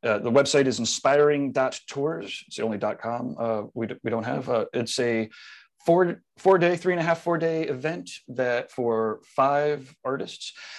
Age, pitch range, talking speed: 30-49, 115-145 Hz, 155 wpm